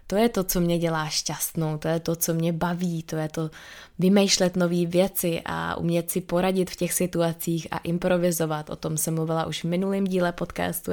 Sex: female